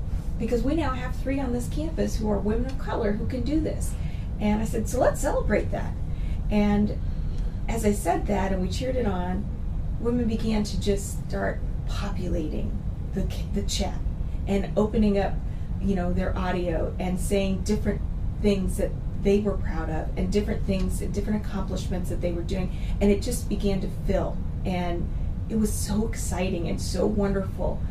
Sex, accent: female, American